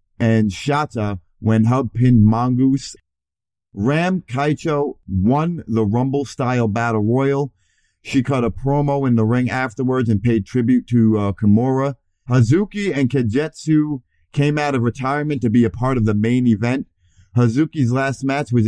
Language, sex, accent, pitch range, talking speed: English, male, American, 110-135 Hz, 145 wpm